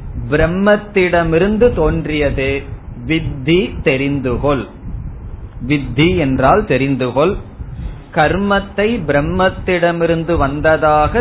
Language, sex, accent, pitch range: Tamil, male, native, 130-165 Hz